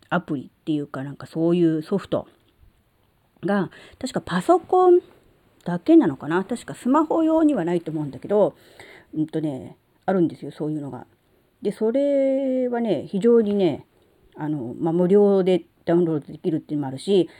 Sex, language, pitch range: female, Japanese, 150-200 Hz